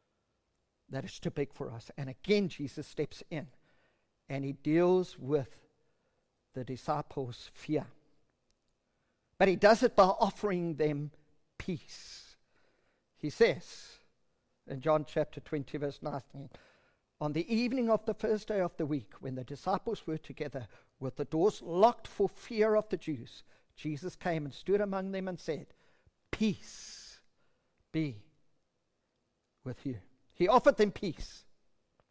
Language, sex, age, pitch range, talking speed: English, male, 50-69, 145-210 Hz, 140 wpm